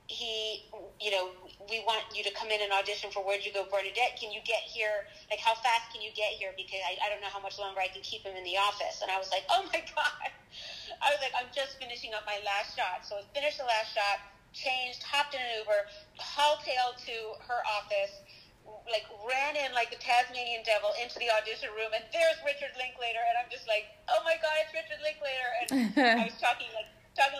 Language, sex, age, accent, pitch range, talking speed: English, female, 30-49, American, 205-275 Hz, 230 wpm